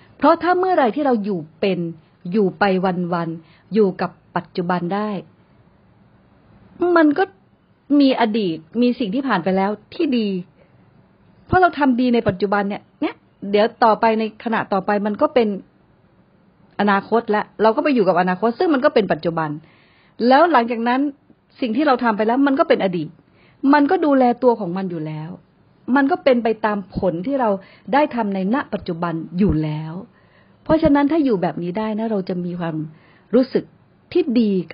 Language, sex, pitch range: Thai, female, 180-250 Hz